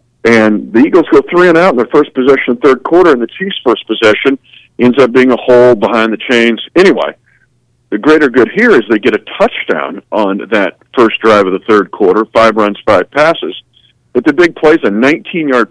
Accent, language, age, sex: American, English, 50-69, male